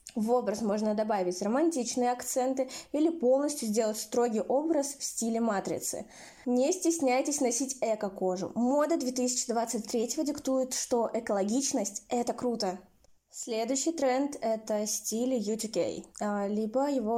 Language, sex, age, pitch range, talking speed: Russian, female, 20-39, 215-260 Hz, 120 wpm